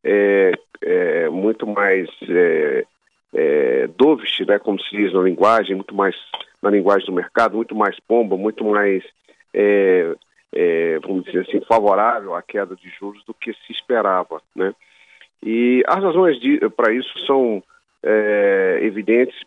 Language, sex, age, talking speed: Portuguese, male, 50-69, 125 wpm